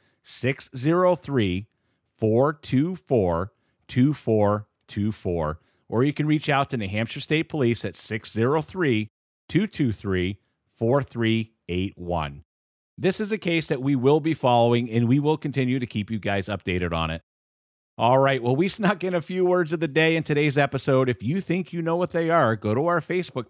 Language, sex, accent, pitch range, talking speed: English, male, American, 105-155 Hz, 155 wpm